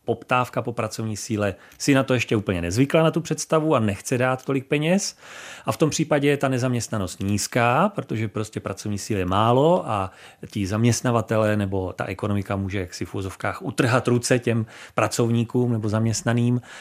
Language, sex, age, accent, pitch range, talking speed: Czech, male, 30-49, native, 115-150 Hz, 170 wpm